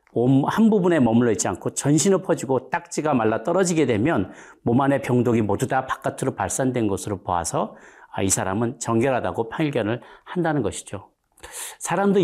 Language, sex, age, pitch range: Korean, male, 40-59, 100-140 Hz